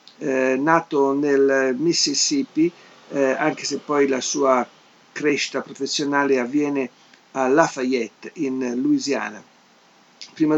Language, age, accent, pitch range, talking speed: Italian, 50-69, native, 130-165 Hz, 100 wpm